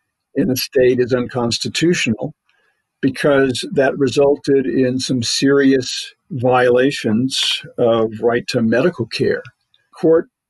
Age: 60-79